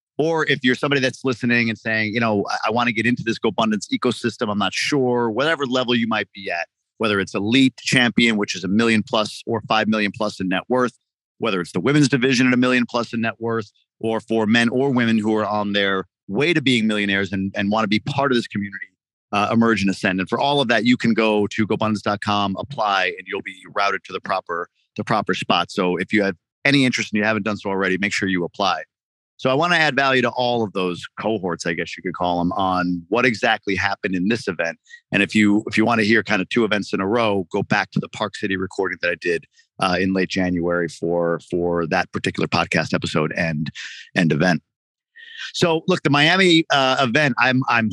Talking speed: 235 wpm